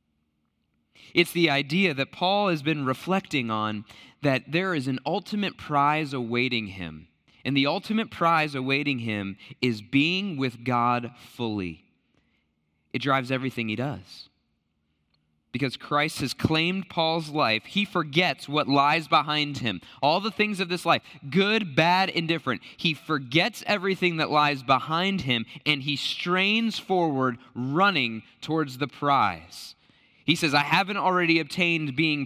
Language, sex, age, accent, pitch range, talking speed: English, male, 20-39, American, 115-170 Hz, 140 wpm